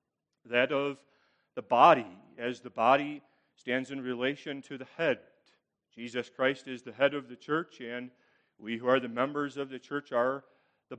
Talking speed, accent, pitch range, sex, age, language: 175 wpm, American, 115-140 Hz, male, 40-59, English